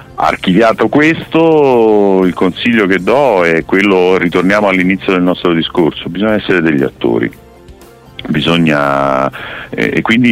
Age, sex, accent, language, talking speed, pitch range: 50-69, male, native, Italian, 120 wpm, 70-100 Hz